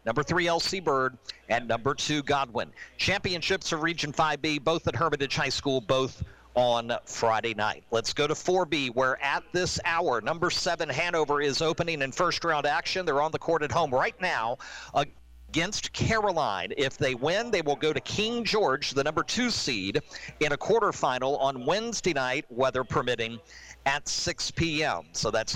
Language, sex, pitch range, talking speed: English, male, 130-165 Hz, 175 wpm